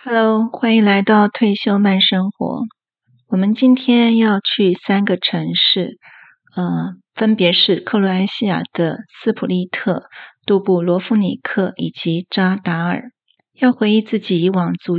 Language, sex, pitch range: Chinese, female, 180-215 Hz